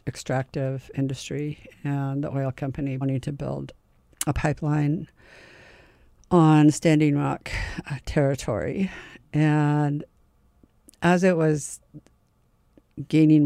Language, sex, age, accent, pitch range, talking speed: English, female, 50-69, American, 135-155 Hz, 90 wpm